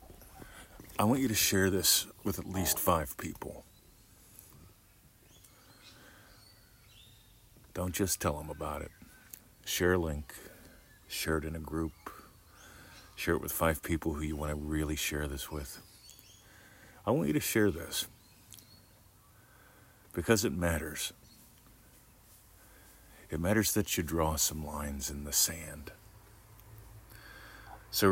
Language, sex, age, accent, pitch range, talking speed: English, male, 50-69, American, 85-110 Hz, 125 wpm